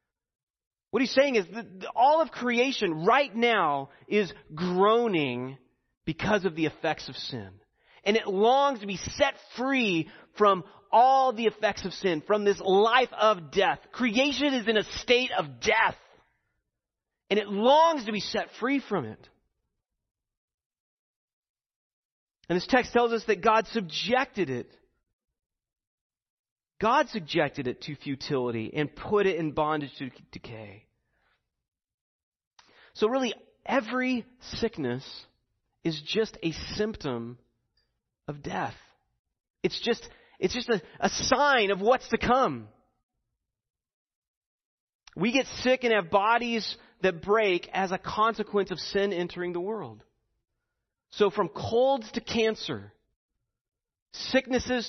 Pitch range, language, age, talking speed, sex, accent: 155-235 Hz, English, 30-49, 125 wpm, male, American